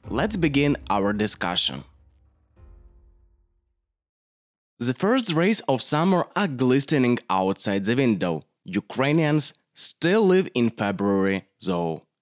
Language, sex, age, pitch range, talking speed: English, male, 20-39, 105-170 Hz, 100 wpm